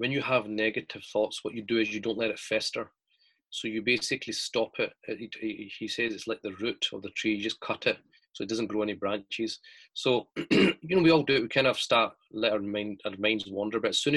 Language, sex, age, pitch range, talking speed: English, male, 30-49, 105-135 Hz, 250 wpm